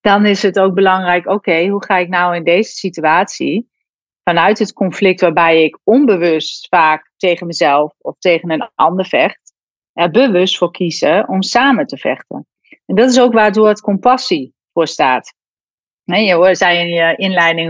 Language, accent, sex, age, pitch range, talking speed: Dutch, Dutch, female, 40-59, 175-225 Hz, 165 wpm